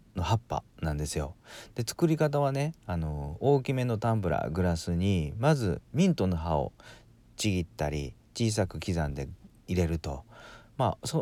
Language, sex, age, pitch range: Japanese, male, 40-59, 80-120 Hz